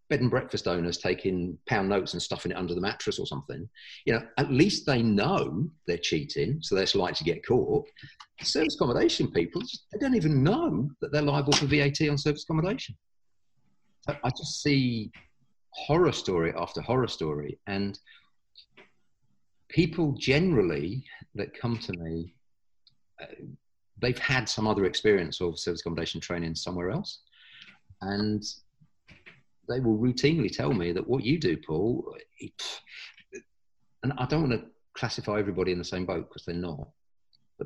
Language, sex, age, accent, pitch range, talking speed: English, male, 40-59, British, 90-140 Hz, 155 wpm